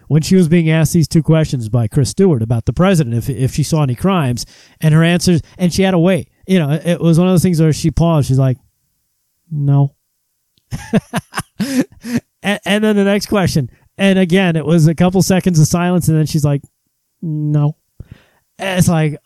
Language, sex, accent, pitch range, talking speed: English, male, American, 145-185 Hz, 205 wpm